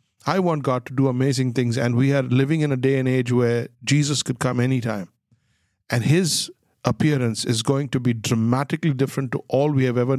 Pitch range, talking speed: 120-140 Hz, 205 wpm